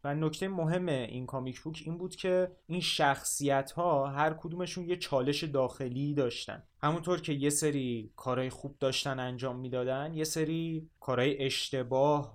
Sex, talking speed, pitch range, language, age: male, 150 wpm, 120-140 Hz, Persian, 20-39